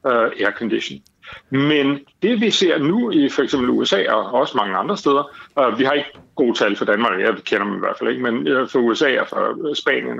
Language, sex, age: Danish, male, 60-79